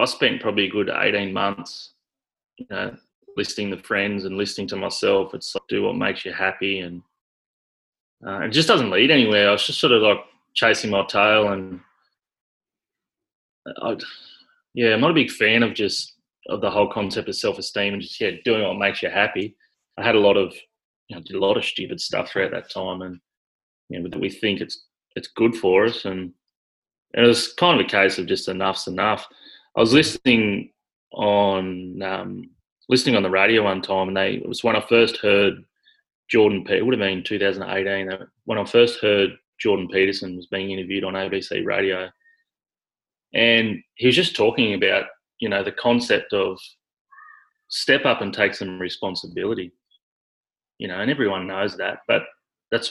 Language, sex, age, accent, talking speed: English, male, 20-39, Australian, 185 wpm